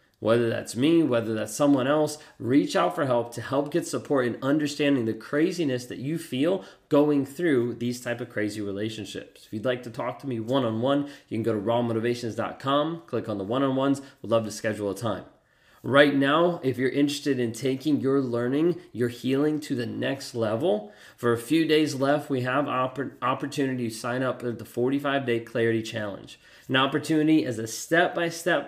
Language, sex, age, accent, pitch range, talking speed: English, male, 30-49, American, 115-145 Hz, 185 wpm